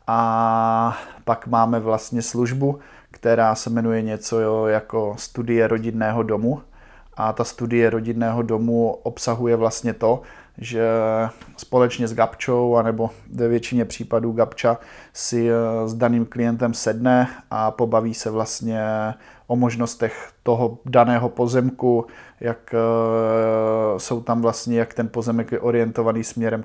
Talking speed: 120 wpm